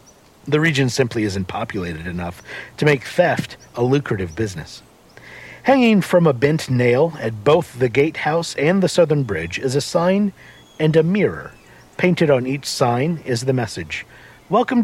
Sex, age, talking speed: male, 50-69, 160 wpm